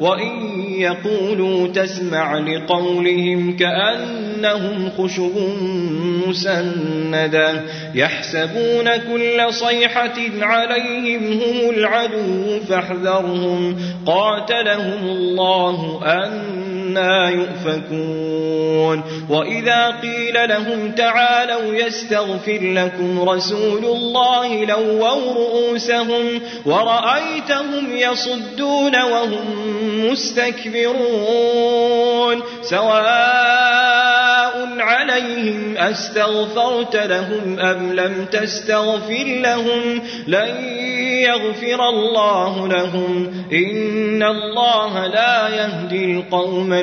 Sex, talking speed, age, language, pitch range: male, 65 wpm, 30-49, Arabic, 185-240 Hz